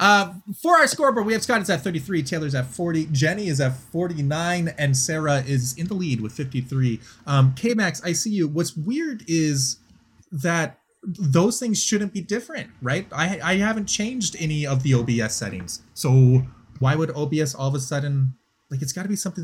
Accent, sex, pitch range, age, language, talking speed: American, male, 125-175 Hz, 30-49, English, 195 wpm